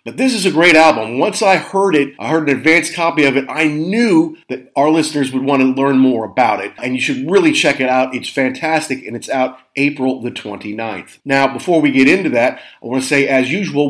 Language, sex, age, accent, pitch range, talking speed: English, male, 40-59, American, 130-165 Hz, 240 wpm